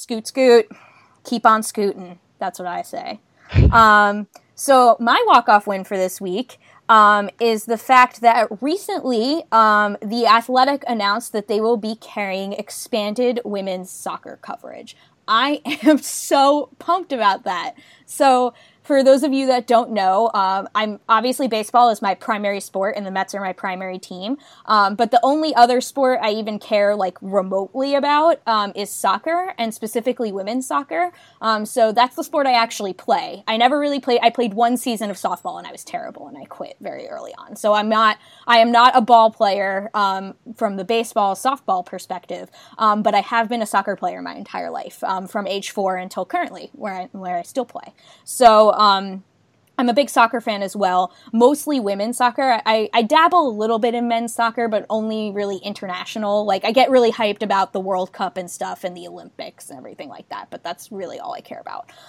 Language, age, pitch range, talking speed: English, 20-39, 200-245 Hz, 195 wpm